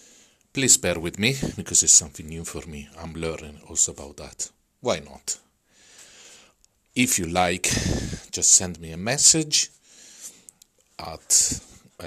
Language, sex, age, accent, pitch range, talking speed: Italian, male, 50-69, native, 80-105 Hz, 130 wpm